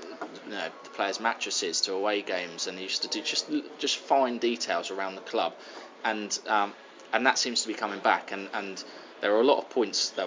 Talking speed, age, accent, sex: 220 wpm, 20-39, British, male